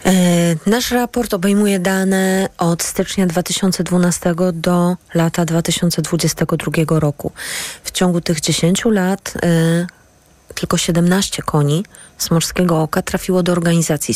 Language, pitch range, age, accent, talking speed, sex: Polish, 170-195 Hz, 20-39, native, 105 wpm, female